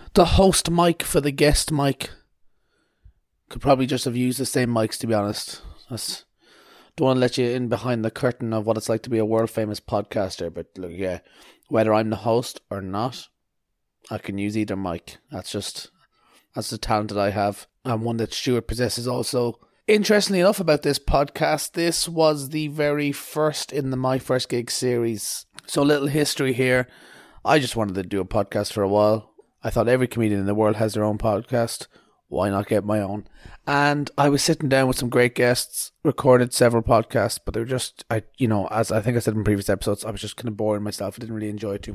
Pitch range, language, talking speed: 105-130 Hz, English, 220 wpm